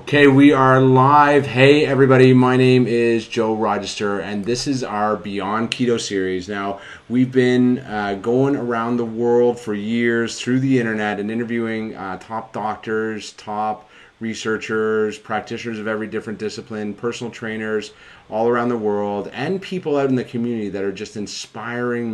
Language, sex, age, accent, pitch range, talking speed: English, male, 30-49, American, 100-120 Hz, 160 wpm